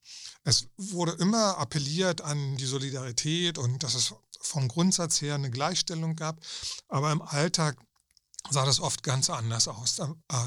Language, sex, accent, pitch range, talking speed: German, male, German, 130-160 Hz, 155 wpm